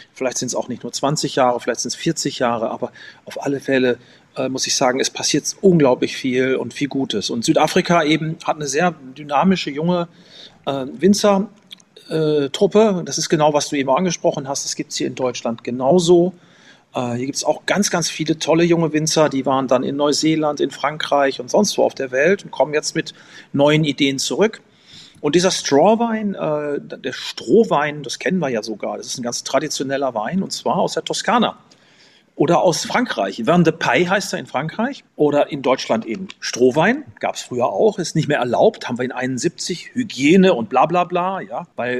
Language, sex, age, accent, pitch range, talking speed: German, male, 40-59, German, 135-185 Hz, 200 wpm